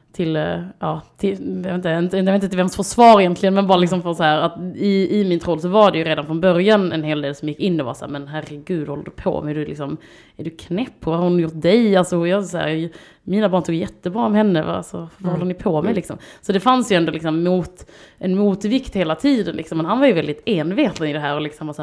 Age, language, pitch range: 20-39, Swedish, 155-190 Hz